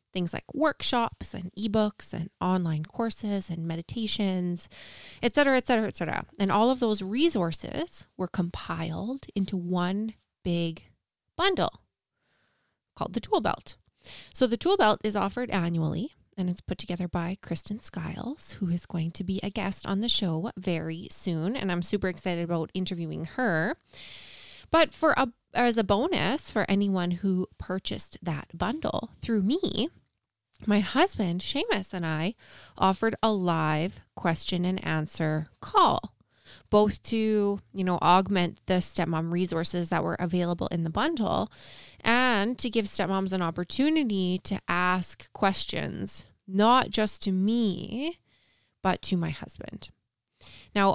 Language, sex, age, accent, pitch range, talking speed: English, female, 20-39, American, 175-220 Hz, 145 wpm